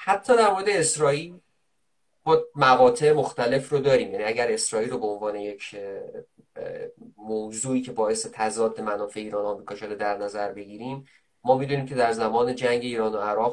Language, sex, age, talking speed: Persian, male, 20-39, 165 wpm